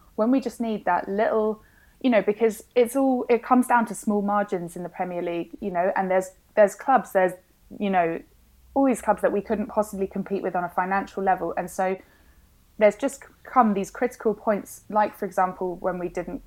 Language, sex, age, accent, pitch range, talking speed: English, female, 20-39, British, 180-215 Hz, 210 wpm